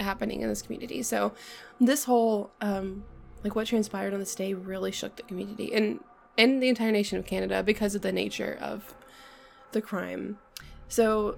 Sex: female